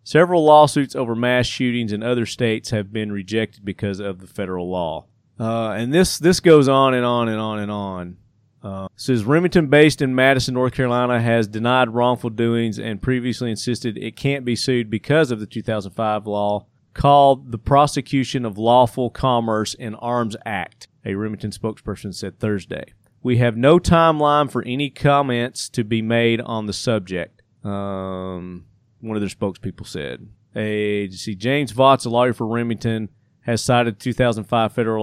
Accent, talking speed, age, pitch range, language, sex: American, 165 wpm, 30-49, 105-125 Hz, English, male